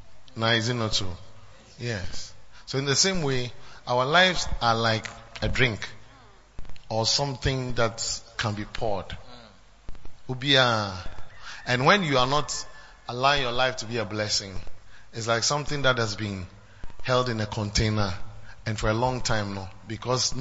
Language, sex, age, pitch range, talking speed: English, male, 30-49, 105-130 Hz, 145 wpm